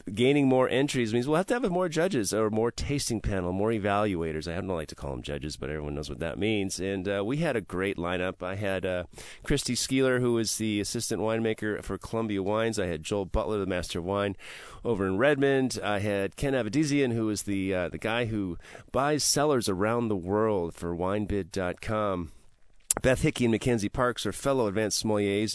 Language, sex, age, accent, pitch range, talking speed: English, male, 30-49, American, 95-120 Hz, 205 wpm